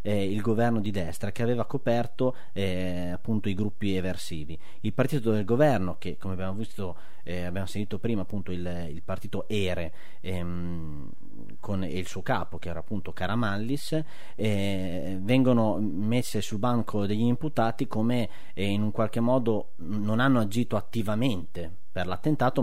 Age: 30-49